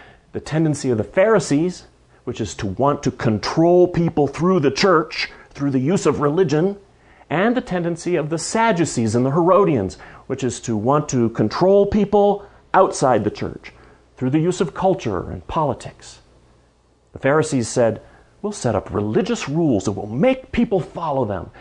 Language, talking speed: English, 165 wpm